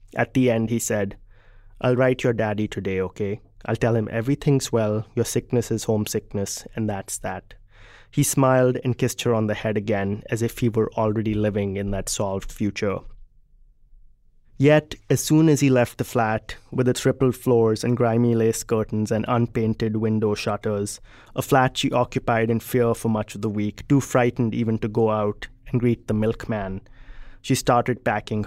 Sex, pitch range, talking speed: male, 105-125 Hz, 180 wpm